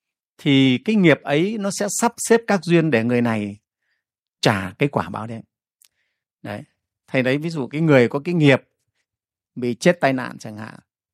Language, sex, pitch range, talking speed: Vietnamese, male, 125-175 Hz, 185 wpm